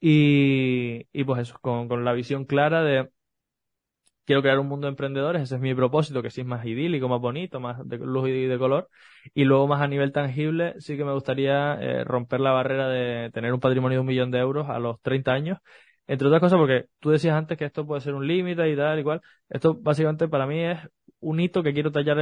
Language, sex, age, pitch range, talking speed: Spanish, male, 20-39, 125-150 Hz, 240 wpm